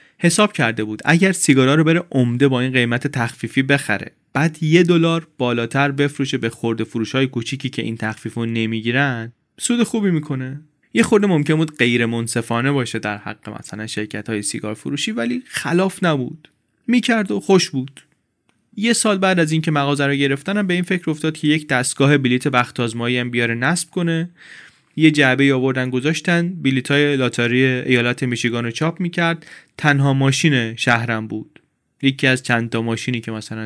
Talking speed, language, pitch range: 160 wpm, Persian, 115-160 Hz